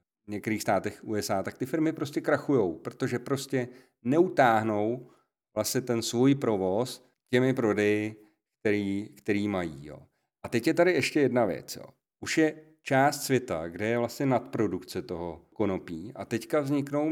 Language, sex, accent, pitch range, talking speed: Czech, male, native, 110-130 Hz, 145 wpm